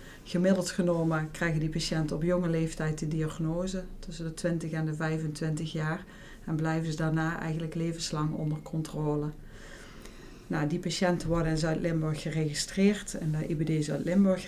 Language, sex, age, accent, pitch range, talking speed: Dutch, female, 40-59, Dutch, 160-180 Hz, 150 wpm